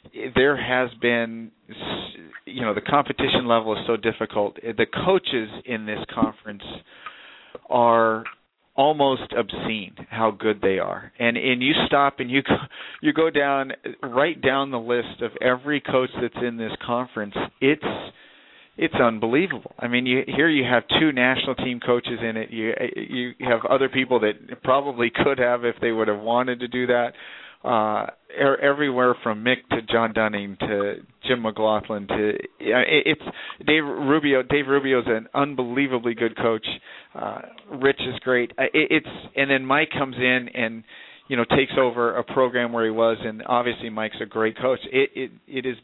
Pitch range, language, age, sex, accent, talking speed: 115-135 Hz, English, 40-59, male, American, 175 wpm